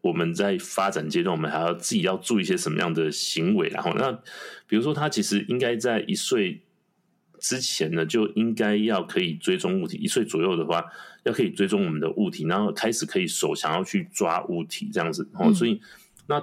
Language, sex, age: Chinese, male, 30-49